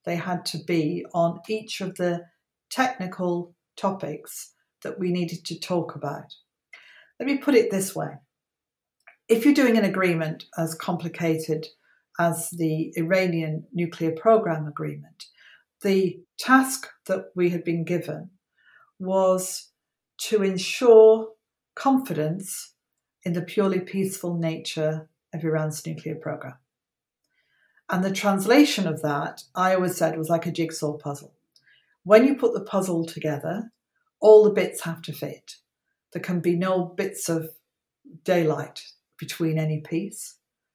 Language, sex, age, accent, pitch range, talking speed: English, female, 50-69, British, 160-200 Hz, 135 wpm